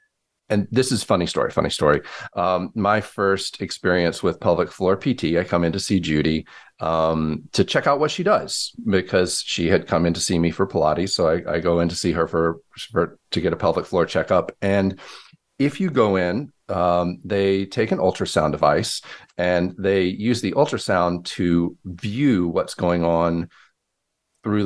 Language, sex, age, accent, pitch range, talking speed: English, male, 40-59, American, 85-115 Hz, 185 wpm